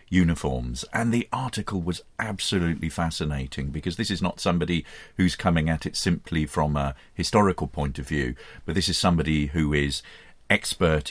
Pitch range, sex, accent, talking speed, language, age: 80-105 Hz, male, British, 160 wpm, English, 40-59